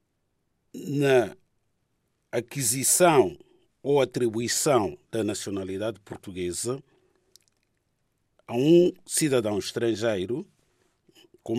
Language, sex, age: Portuguese, male, 50-69